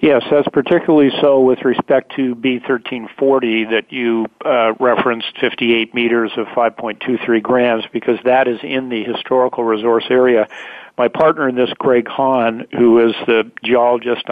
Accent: American